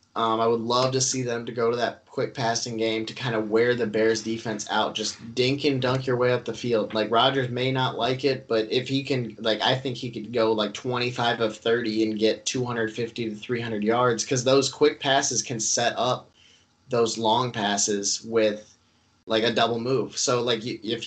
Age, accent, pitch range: 20-39, American, 110-125 Hz